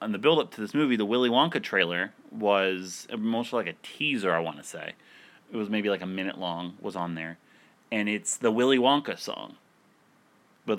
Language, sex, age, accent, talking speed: English, male, 30-49, American, 200 wpm